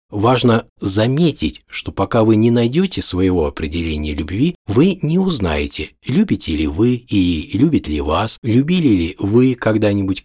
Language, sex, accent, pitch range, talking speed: Russian, male, native, 85-120 Hz, 140 wpm